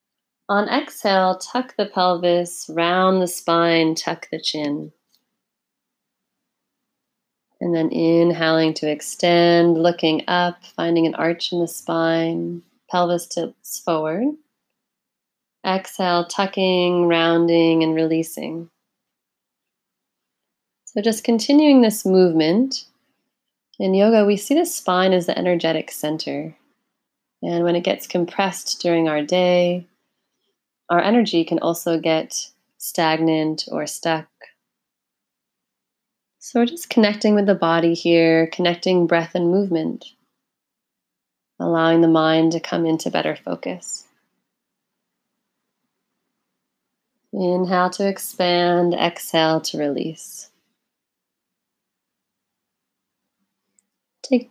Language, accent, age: English, American, 30-49